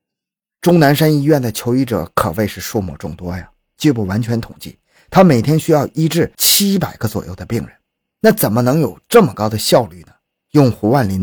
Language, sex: Chinese, male